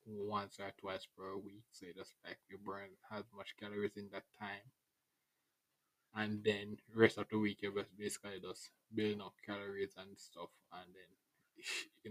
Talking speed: 175 wpm